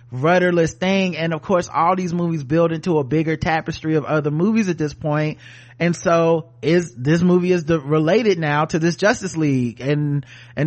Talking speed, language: 185 wpm, English